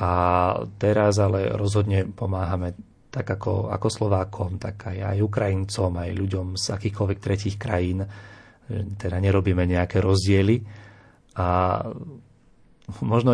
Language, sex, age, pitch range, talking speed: Slovak, male, 30-49, 95-110 Hz, 110 wpm